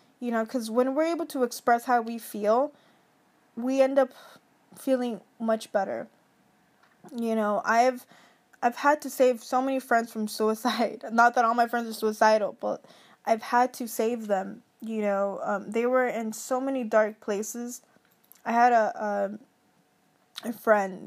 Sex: female